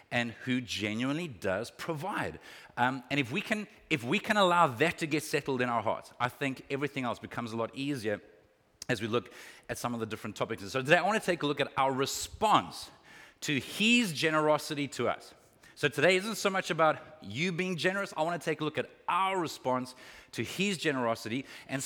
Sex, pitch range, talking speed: male, 125-165 Hz, 200 wpm